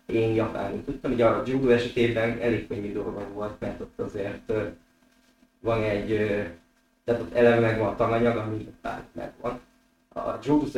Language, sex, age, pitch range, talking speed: Hungarian, male, 20-39, 105-120 Hz, 150 wpm